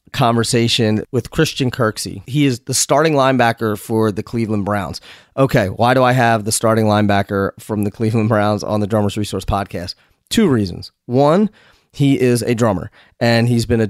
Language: English